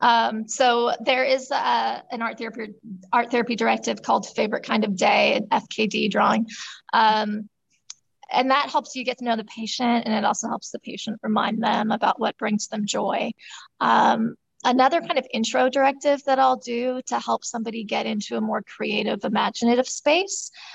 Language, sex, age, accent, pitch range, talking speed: English, female, 20-39, American, 220-255 Hz, 175 wpm